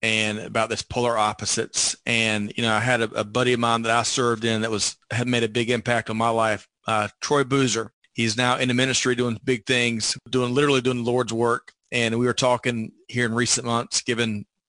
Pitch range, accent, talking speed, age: 115-140 Hz, American, 225 wpm, 40-59